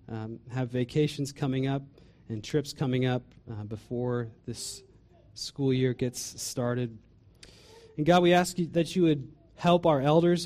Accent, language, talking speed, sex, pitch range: American, English, 150 wpm, male, 115-140 Hz